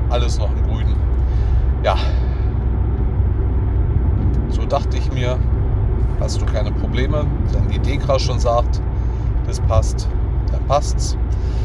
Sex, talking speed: male, 115 wpm